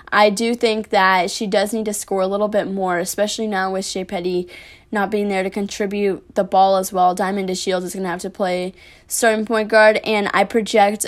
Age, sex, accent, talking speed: 10-29, female, American, 225 wpm